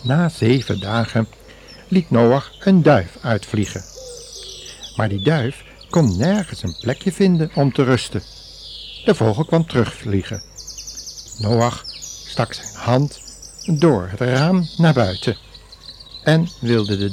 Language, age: Dutch, 60-79